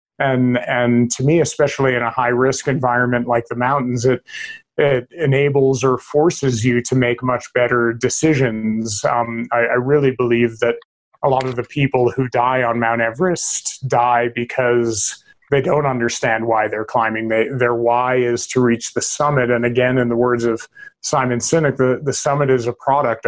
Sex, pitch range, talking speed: male, 120-135 Hz, 180 wpm